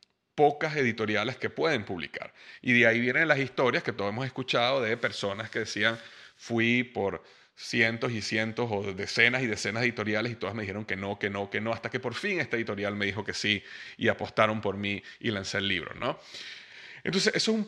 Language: Spanish